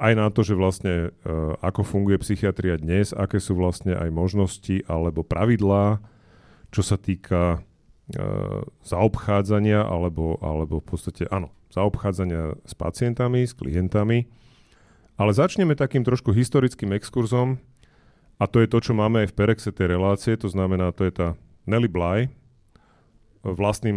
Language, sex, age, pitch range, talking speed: Slovak, male, 40-59, 95-115 Hz, 145 wpm